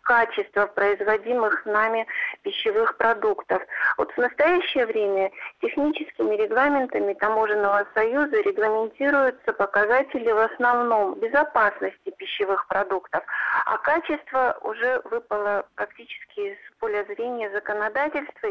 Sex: female